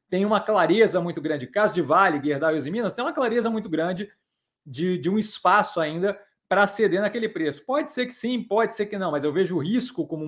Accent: Brazilian